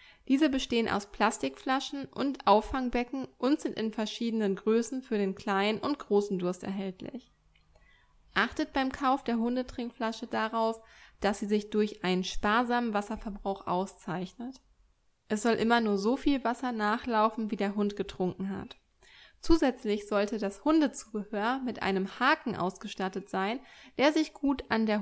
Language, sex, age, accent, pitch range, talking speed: German, female, 20-39, German, 200-245 Hz, 140 wpm